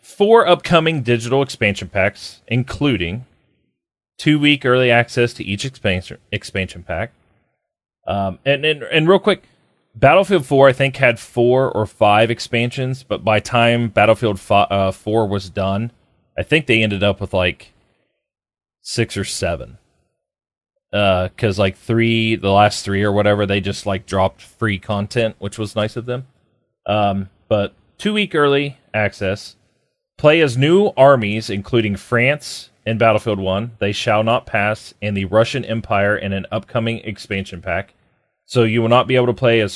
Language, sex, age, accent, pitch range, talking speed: English, male, 30-49, American, 100-130 Hz, 160 wpm